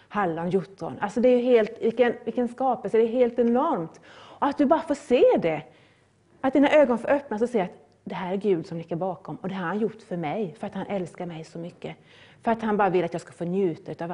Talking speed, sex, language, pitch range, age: 260 wpm, female, Swedish, 180-255 Hz, 30-49